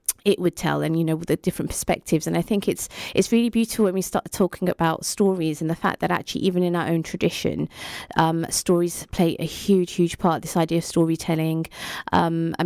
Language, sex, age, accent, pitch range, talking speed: English, female, 20-39, British, 165-195 Hz, 215 wpm